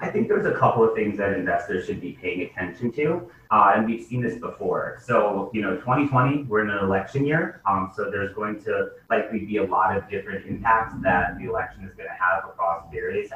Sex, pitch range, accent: male, 95-120 Hz, American